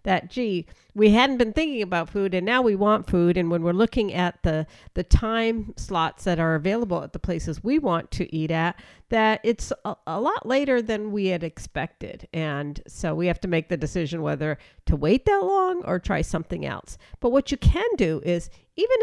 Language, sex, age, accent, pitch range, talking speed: English, female, 50-69, American, 175-235 Hz, 210 wpm